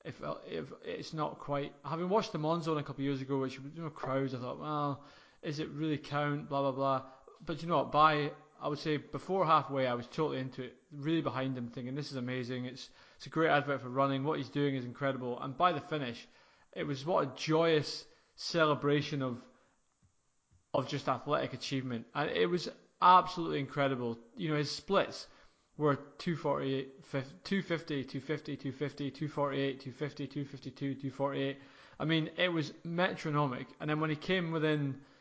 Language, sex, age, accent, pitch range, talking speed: English, male, 20-39, British, 135-155 Hz, 180 wpm